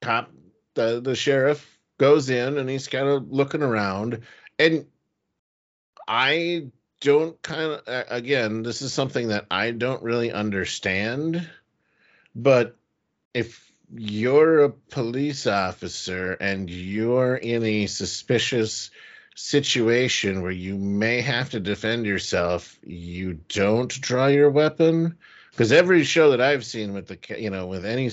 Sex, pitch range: male, 100-140 Hz